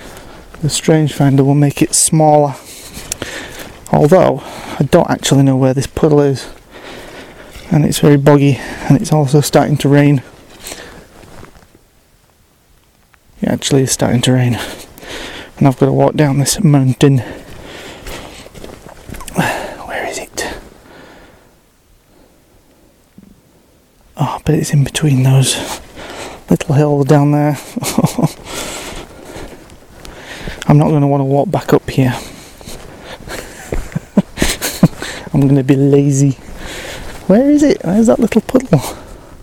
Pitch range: 130-155 Hz